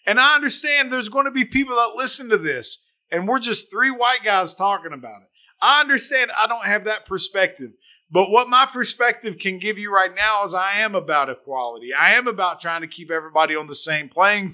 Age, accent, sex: 50-69, American, male